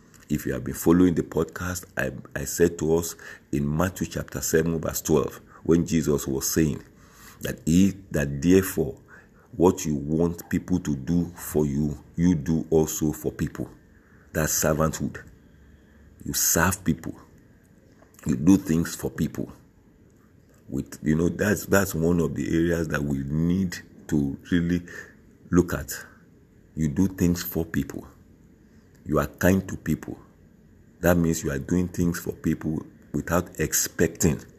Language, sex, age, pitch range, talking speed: English, male, 50-69, 75-85 Hz, 145 wpm